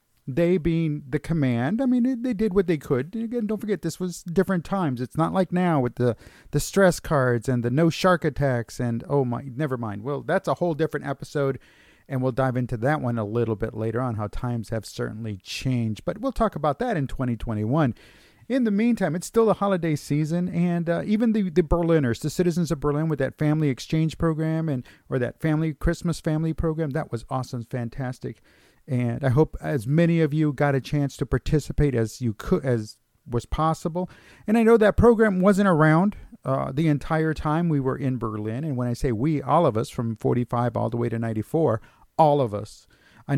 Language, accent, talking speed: English, American, 210 wpm